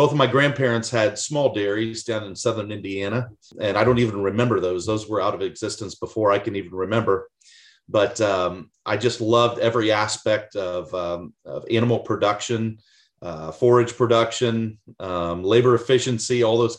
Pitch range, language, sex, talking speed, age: 105-125 Hz, English, male, 170 wpm, 40-59